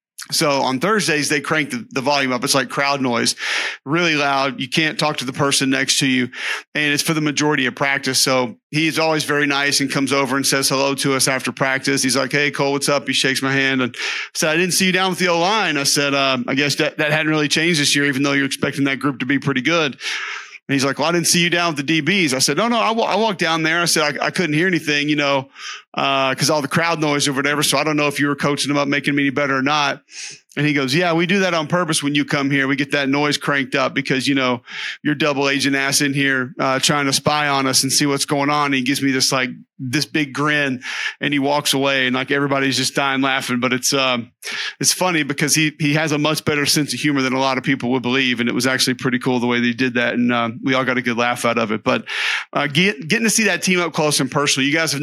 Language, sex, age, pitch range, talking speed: English, male, 40-59, 135-150 Hz, 280 wpm